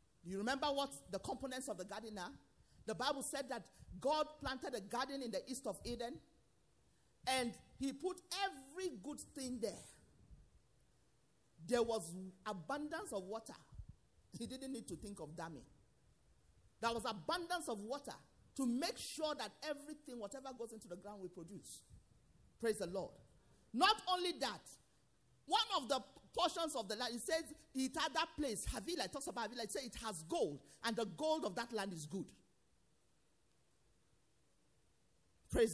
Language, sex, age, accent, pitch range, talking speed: English, male, 40-59, Nigerian, 180-275 Hz, 160 wpm